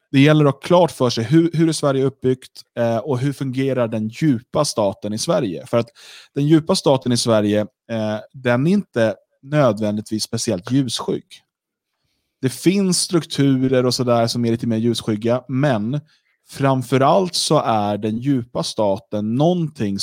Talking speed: 155 wpm